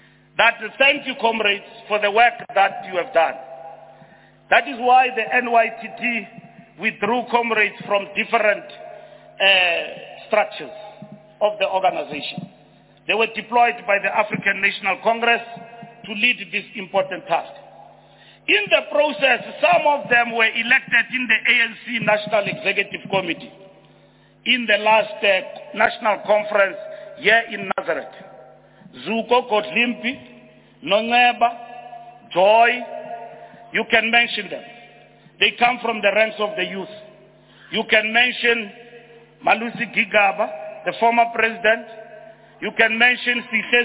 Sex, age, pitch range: male, 40-59, 205-240 Hz